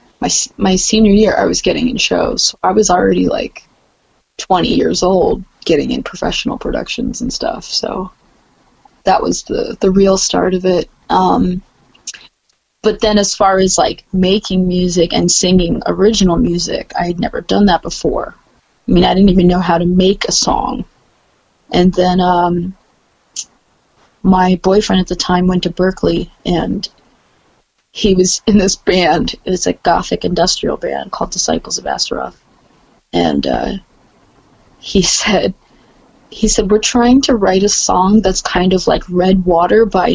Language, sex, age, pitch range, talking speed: English, female, 20-39, 185-215 Hz, 160 wpm